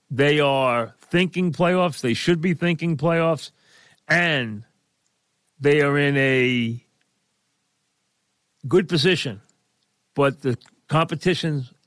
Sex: male